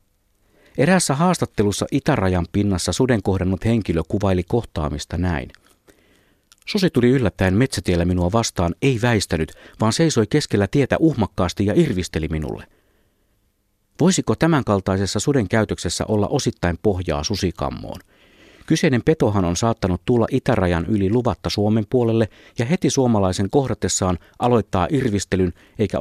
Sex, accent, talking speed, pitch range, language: male, native, 120 wpm, 90-125 Hz, Finnish